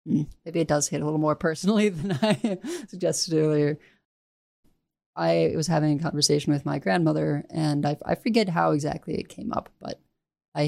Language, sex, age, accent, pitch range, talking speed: English, female, 20-39, American, 150-185 Hz, 170 wpm